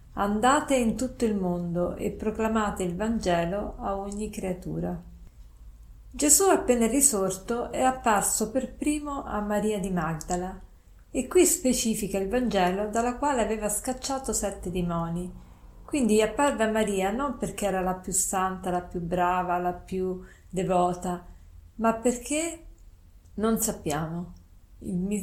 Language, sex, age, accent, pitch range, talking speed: Italian, female, 50-69, native, 180-220 Hz, 130 wpm